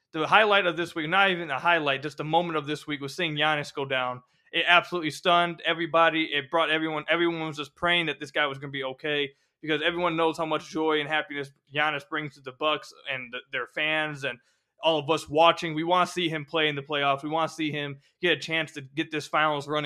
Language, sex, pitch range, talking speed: English, male, 150-170 Hz, 250 wpm